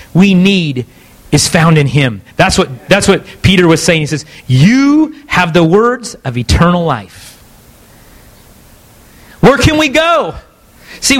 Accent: American